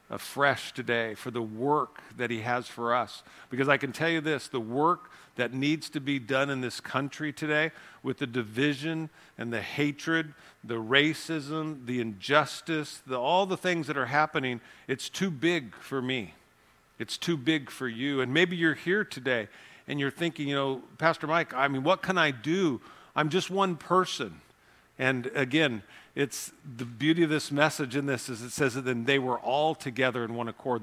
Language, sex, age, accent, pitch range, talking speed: English, male, 50-69, American, 125-155 Hz, 190 wpm